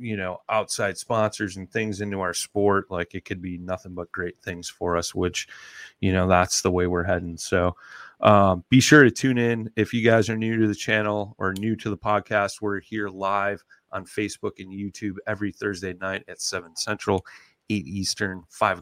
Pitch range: 90-105 Hz